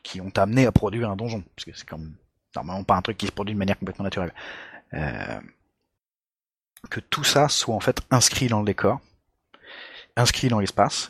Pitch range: 95-120 Hz